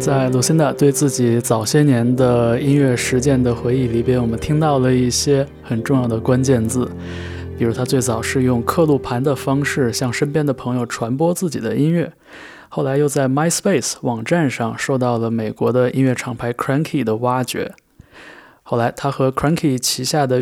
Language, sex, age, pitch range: Chinese, male, 20-39, 120-140 Hz